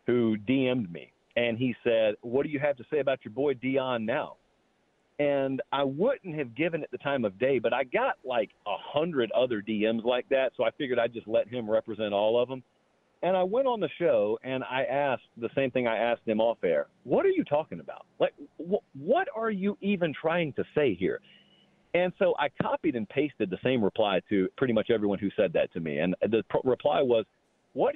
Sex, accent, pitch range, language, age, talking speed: male, American, 125-190 Hz, English, 40-59, 225 wpm